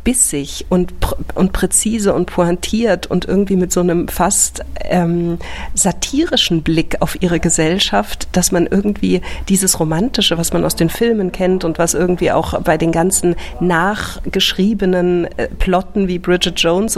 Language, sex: German, female